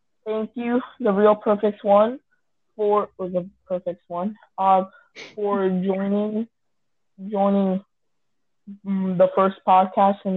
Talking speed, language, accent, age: 105 wpm, English, American, 20-39